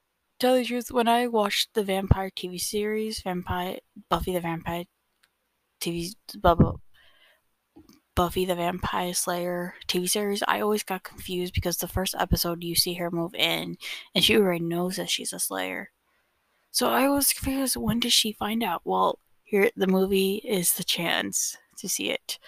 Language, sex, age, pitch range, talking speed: English, female, 20-39, 170-210 Hz, 165 wpm